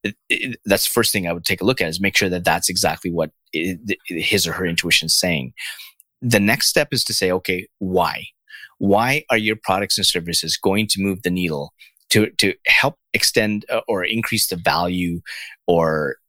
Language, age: English, 30-49